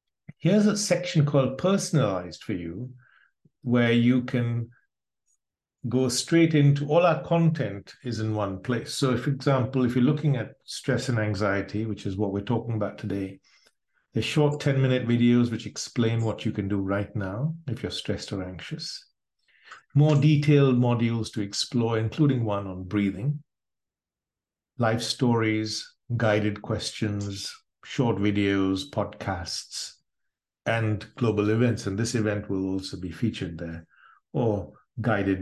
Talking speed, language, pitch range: 140 wpm, English, 105-145 Hz